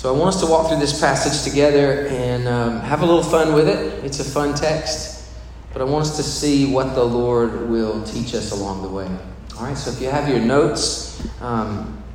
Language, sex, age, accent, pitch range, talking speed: English, male, 40-59, American, 125-175 Hz, 225 wpm